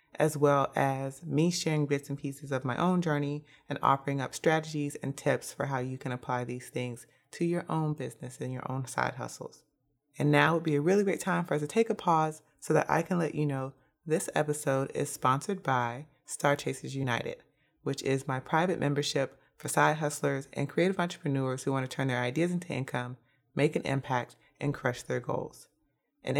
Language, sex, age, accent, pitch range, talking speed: English, female, 30-49, American, 135-160 Hz, 205 wpm